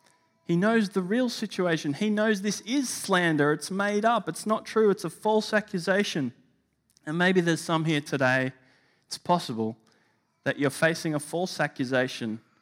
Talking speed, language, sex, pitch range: 160 wpm, English, male, 135-170 Hz